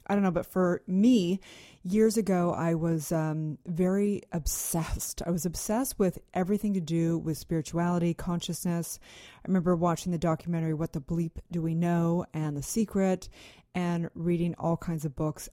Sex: female